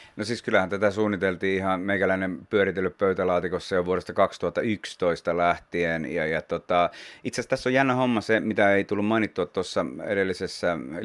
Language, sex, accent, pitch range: Finnish, male, native, 85-105 Hz